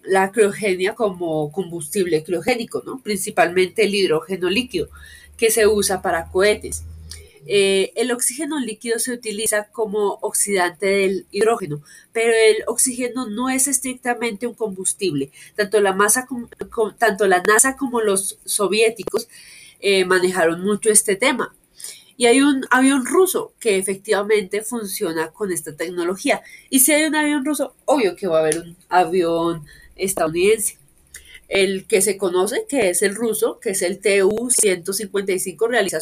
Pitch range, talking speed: 190-235 Hz, 145 wpm